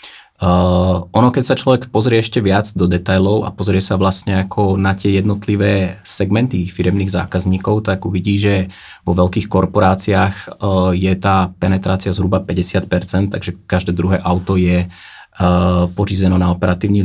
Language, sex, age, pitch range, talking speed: Czech, male, 20-39, 95-100 Hz, 150 wpm